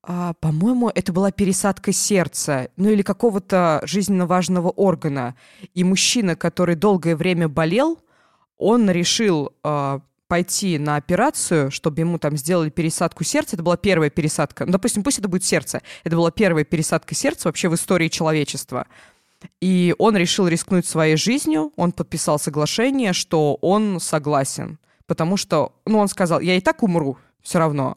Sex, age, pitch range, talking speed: female, 20-39, 155-195 Hz, 150 wpm